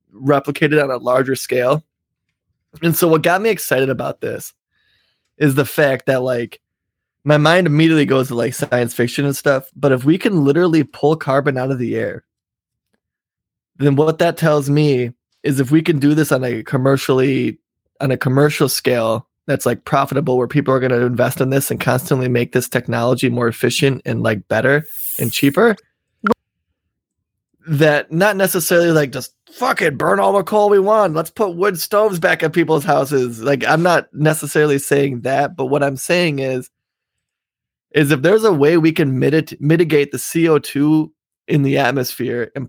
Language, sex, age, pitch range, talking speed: English, male, 20-39, 130-155 Hz, 180 wpm